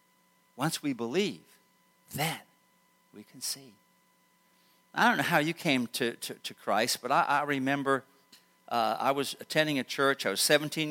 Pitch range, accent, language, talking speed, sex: 120-155 Hz, American, English, 165 wpm, male